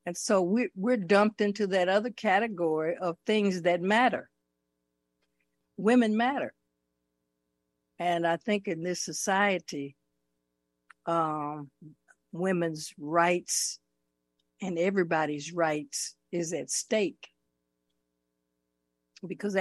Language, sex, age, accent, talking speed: English, female, 60-79, American, 90 wpm